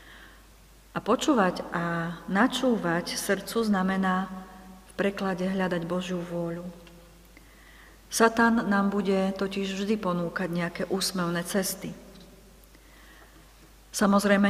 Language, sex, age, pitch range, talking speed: Slovak, female, 40-59, 180-200 Hz, 85 wpm